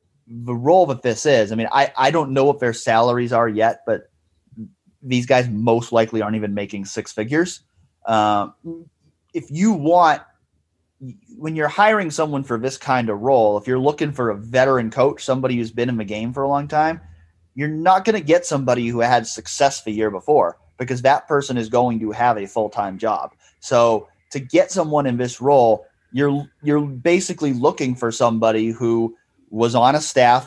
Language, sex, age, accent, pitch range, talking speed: English, male, 30-49, American, 115-135 Hz, 190 wpm